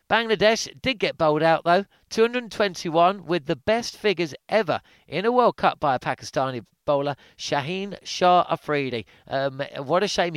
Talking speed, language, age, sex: 155 wpm, English, 40-59, male